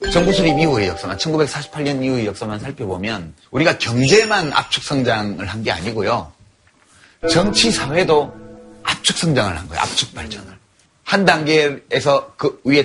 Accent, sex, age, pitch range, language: native, male, 30-49, 105-160 Hz, Korean